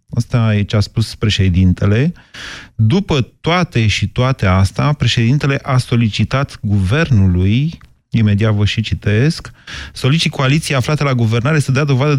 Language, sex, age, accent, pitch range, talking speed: Romanian, male, 30-49, native, 105-130 Hz, 135 wpm